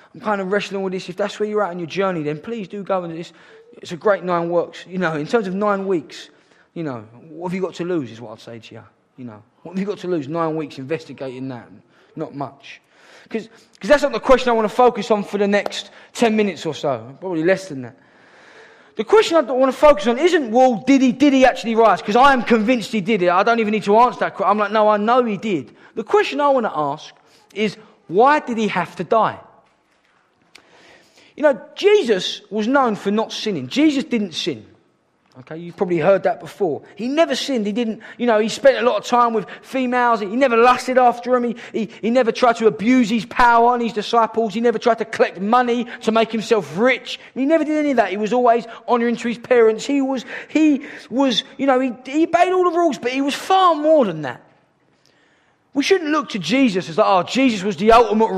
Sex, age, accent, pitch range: male, 20-39, British, 190-255 Hz